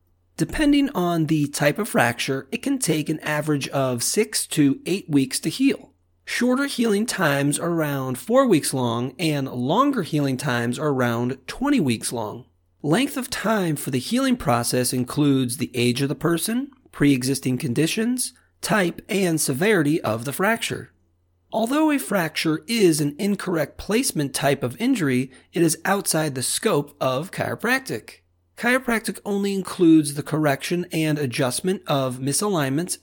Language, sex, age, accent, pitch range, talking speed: English, male, 40-59, American, 130-195 Hz, 150 wpm